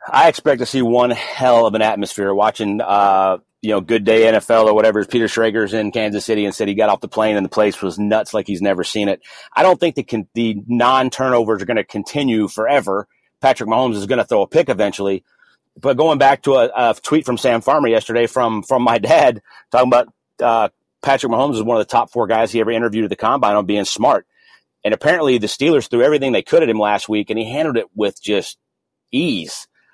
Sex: male